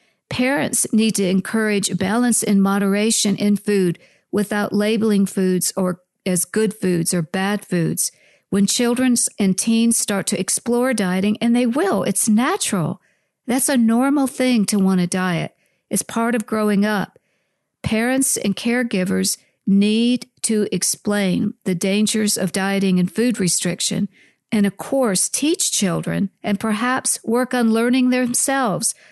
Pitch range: 190-230 Hz